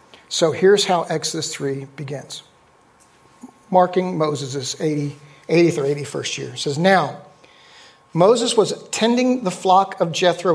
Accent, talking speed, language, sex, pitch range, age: American, 135 wpm, English, male, 155-190 Hz, 50-69